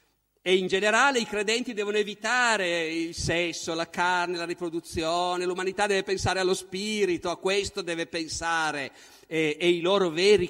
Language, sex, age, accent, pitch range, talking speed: Italian, male, 50-69, native, 160-215 Hz, 155 wpm